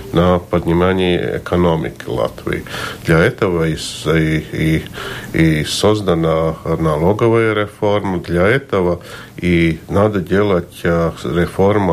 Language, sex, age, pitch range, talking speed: Russian, male, 50-69, 85-105 Hz, 90 wpm